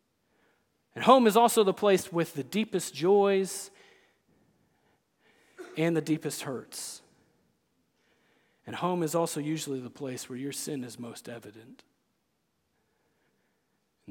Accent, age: American, 40-59